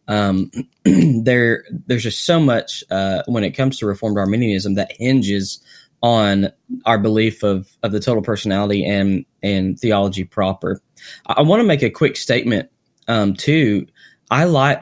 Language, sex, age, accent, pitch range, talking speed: English, male, 10-29, American, 100-125 Hz, 160 wpm